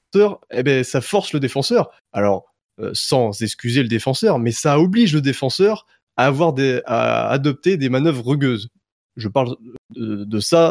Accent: French